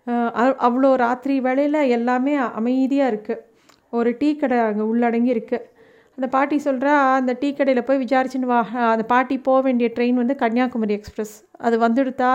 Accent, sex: native, female